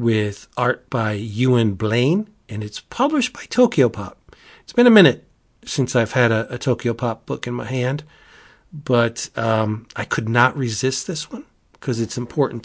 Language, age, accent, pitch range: English, 40-59, American, 110-130 Hz